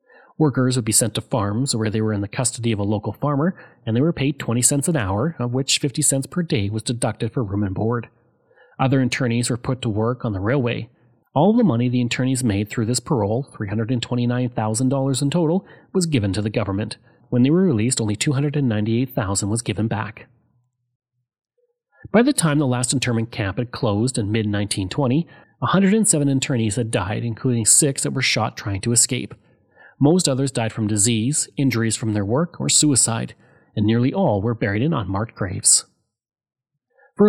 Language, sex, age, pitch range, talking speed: English, male, 30-49, 115-145 Hz, 185 wpm